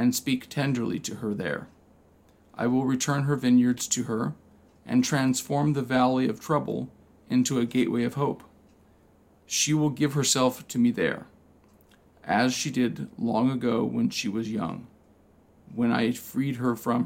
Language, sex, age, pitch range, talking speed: English, male, 40-59, 120-140 Hz, 160 wpm